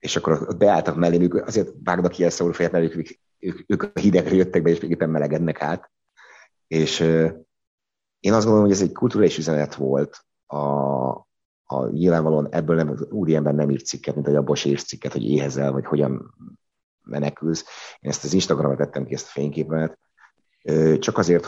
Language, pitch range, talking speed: Hungarian, 70-80 Hz, 170 wpm